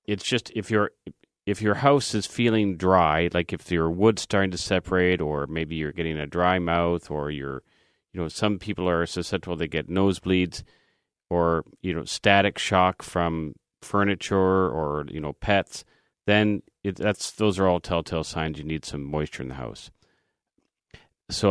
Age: 40-59